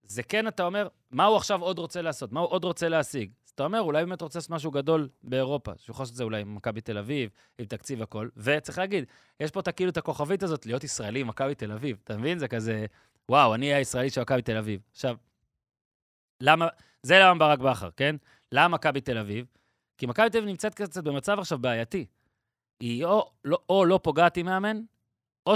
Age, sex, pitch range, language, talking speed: 30-49, male, 125-175 Hz, Hebrew, 105 wpm